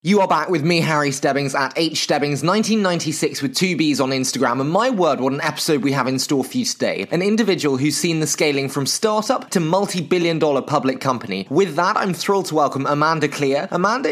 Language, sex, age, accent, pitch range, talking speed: English, male, 20-39, British, 150-200 Hz, 210 wpm